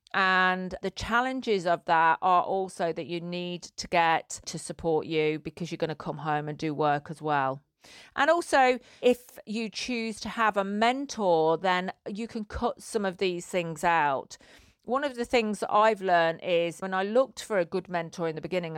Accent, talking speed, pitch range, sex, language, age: British, 200 wpm, 170-215 Hz, female, English, 40-59